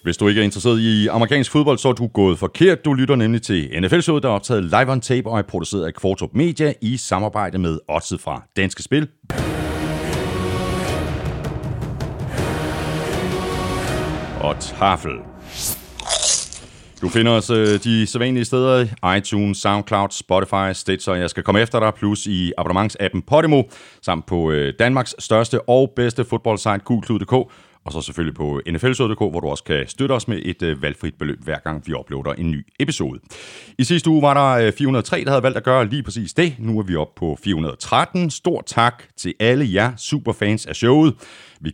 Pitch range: 95-130 Hz